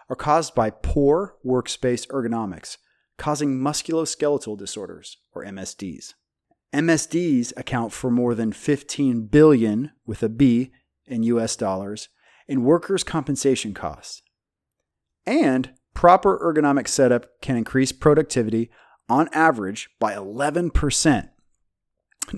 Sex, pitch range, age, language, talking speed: male, 115-150 Hz, 30-49, English, 105 wpm